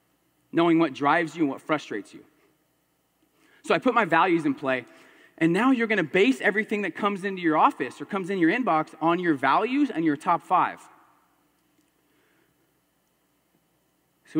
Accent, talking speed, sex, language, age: American, 165 wpm, male, English, 30-49